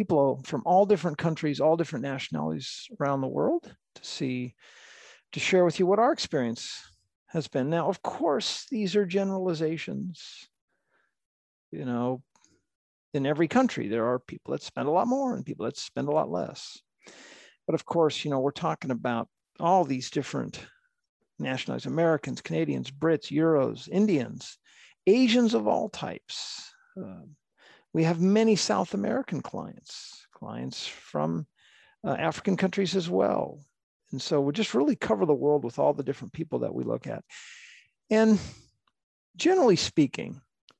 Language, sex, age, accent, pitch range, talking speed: English, male, 50-69, American, 135-185 Hz, 150 wpm